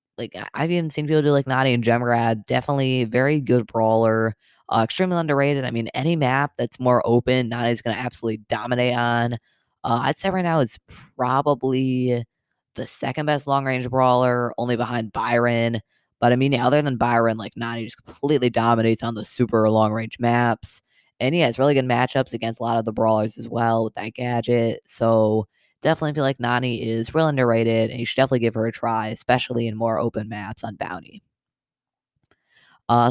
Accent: American